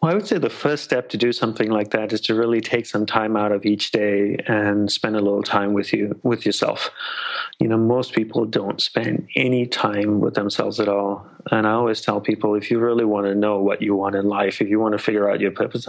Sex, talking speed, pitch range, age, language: male, 250 wpm, 100-115 Hz, 30-49, English